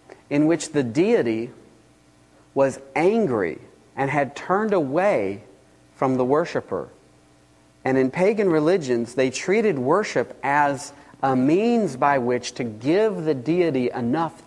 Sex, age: male, 40-59